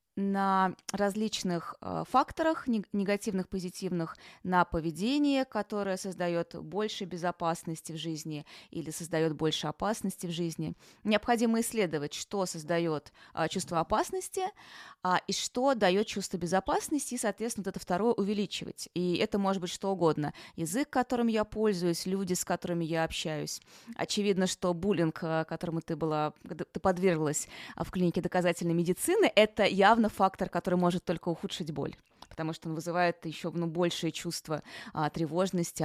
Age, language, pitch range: 20-39, Russian, 165-205 Hz